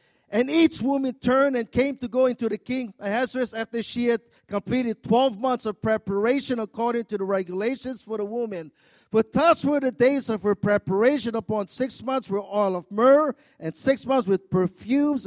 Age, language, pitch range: 50-69, English, 160-250 Hz